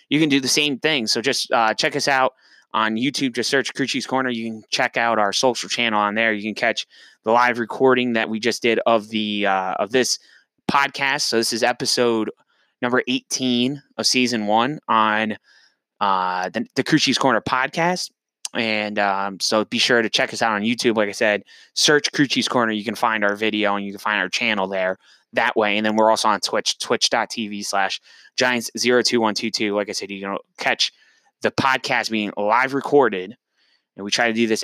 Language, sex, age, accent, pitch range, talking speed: English, male, 20-39, American, 105-125 Hz, 210 wpm